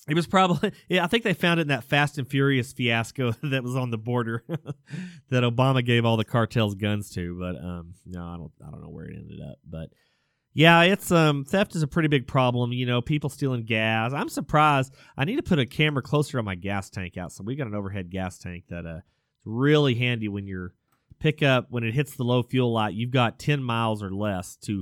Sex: male